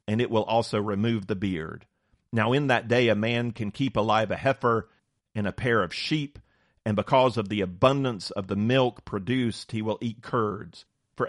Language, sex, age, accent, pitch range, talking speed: English, male, 40-59, American, 100-125 Hz, 195 wpm